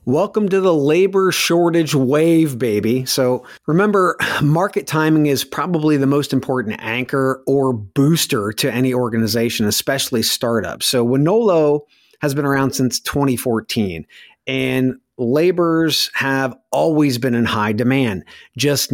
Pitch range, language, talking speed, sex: 125-150 Hz, English, 125 wpm, male